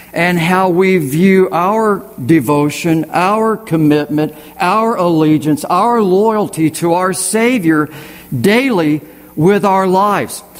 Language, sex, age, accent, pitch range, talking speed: English, male, 50-69, American, 155-215 Hz, 110 wpm